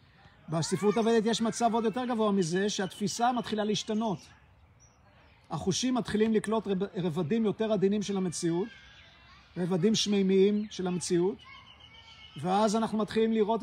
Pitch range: 175-215 Hz